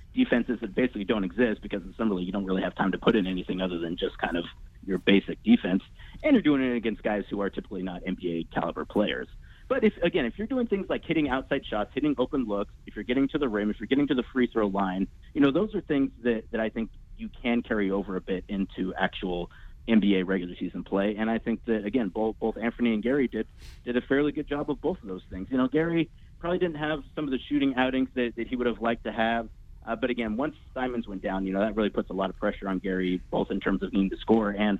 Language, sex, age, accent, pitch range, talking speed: English, male, 30-49, American, 95-130 Hz, 260 wpm